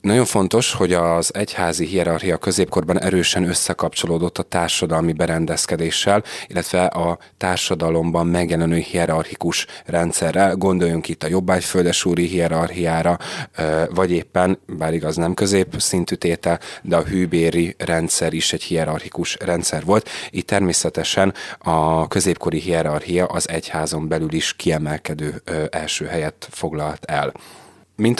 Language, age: Hungarian, 30-49